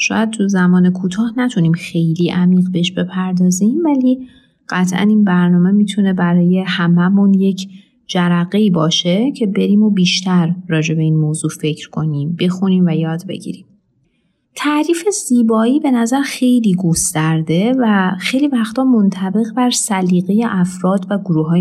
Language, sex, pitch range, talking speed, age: Persian, female, 175-230 Hz, 135 wpm, 30-49